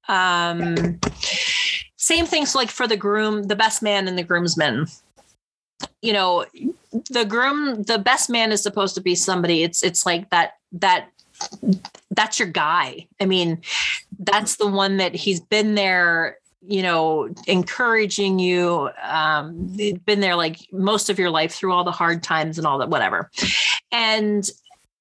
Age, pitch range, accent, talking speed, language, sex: 30-49, 165-210 Hz, American, 155 wpm, English, female